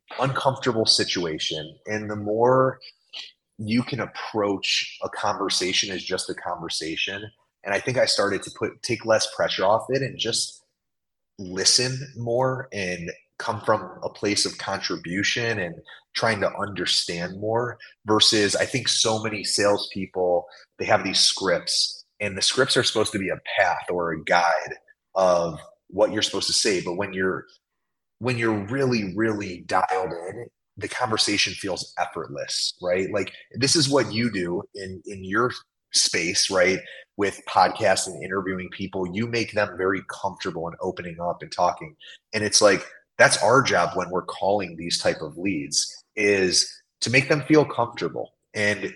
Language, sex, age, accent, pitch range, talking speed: English, male, 30-49, American, 95-125 Hz, 160 wpm